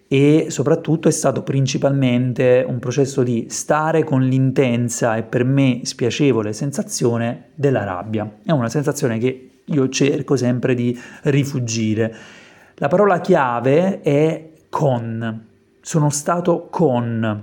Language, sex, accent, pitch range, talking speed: Italian, male, native, 120-150 Hz, 120 wpm